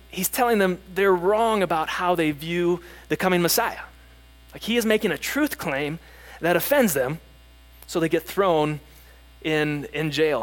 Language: English